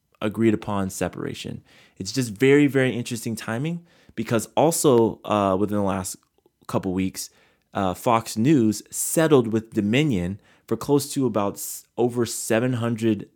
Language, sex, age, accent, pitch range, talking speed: English, male, 20-39, American, 95-120 Hz, 130 wpm